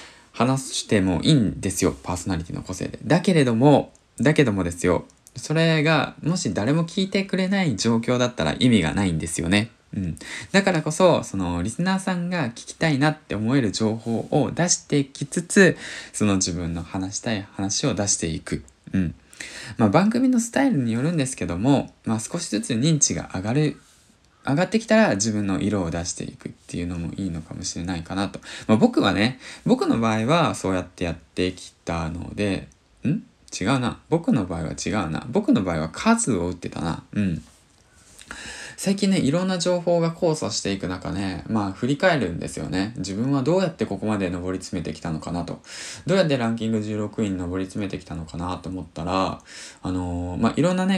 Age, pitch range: 20-39, 90-155 Hz